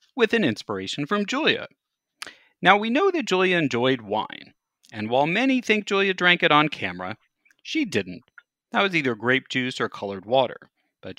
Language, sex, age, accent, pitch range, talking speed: English, male, 40-59, American, 120-190 Hz, 170 wpm